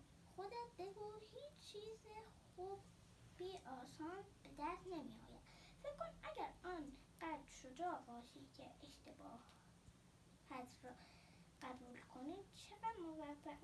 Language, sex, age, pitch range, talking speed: Persian, female, 10-29, 285-390 Hz, 110 wpm